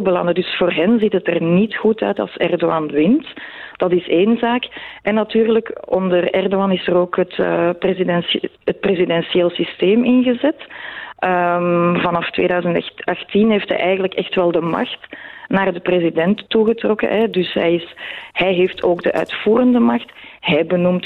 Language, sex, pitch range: Dutch, female, 175-215 Hz